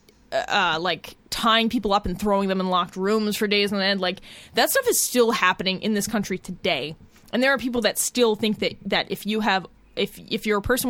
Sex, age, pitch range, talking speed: female, 20-39, 185-230 Hz, 235 wpm